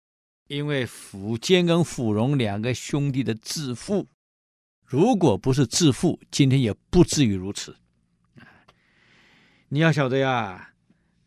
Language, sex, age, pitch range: Chinese, male, 50-69, 105-150 Hz